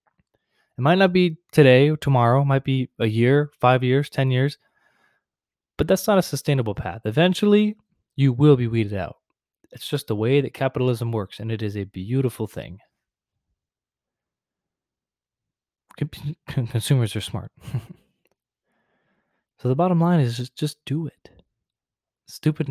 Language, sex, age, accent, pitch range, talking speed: English, male, 20-39, American, 120-150 Hz, 145 wpm